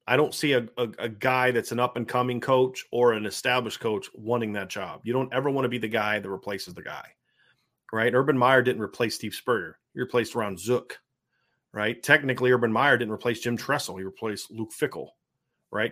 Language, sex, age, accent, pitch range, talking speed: English, male, 30-49, American, 115-140 Hz, 205 wpm